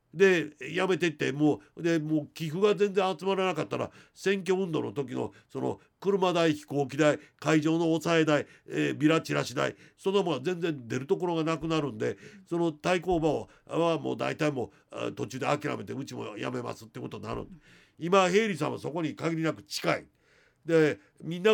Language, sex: Japanese, male